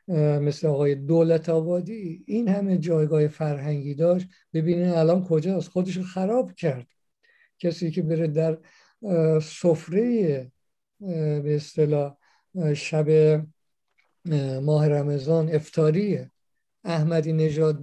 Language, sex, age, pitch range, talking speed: Persian, male, 60-79, 150-175 Hz, 95 wpm